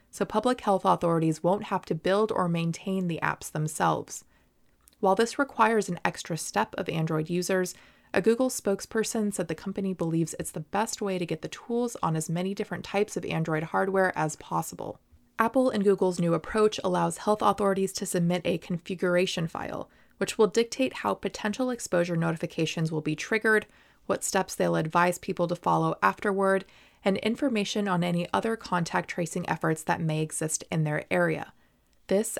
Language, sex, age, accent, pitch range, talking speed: English, female, 20-39, American, 170-210 Hz, 170 wpm